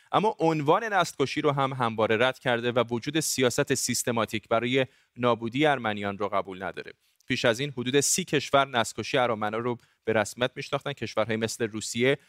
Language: Persian